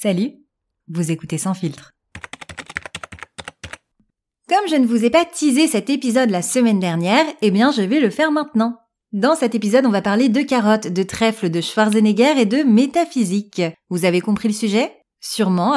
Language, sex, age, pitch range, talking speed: French, female, 30-49, 200-260 Hz, 170 wpm